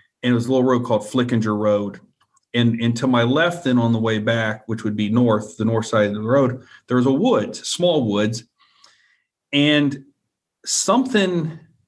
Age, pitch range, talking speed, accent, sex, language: 40-59, 115-135 Hz, 185 wpm, American, male, English